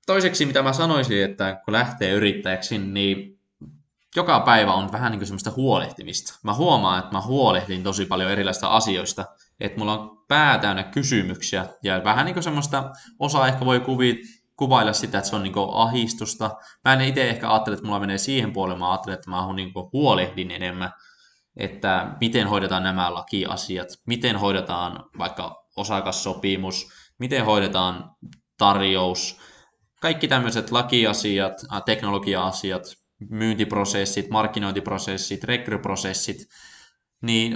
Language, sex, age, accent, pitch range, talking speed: Finnish, male, 20-39, native, 95-115 Hz, 135 wpm